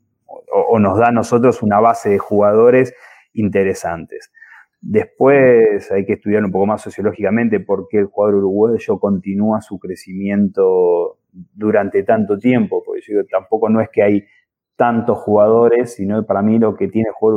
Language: Portuguese